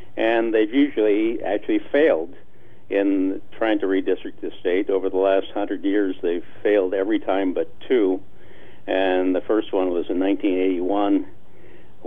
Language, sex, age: English, male, 60-79